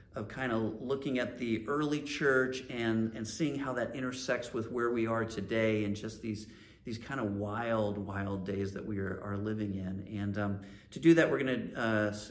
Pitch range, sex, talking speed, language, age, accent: 105-130 Hz, male, 210 wpm, English, 40-59, American